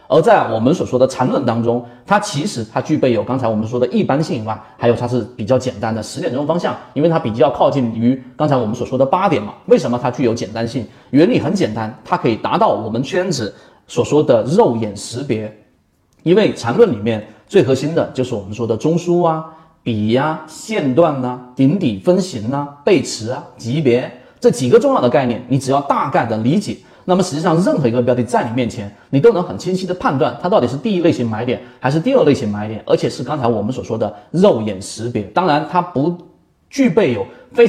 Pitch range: 120-175 Hz